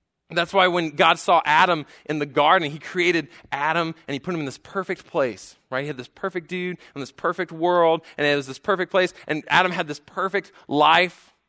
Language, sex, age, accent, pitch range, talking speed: English, male, 20-39, American, 125-175 Hz, 220 wpm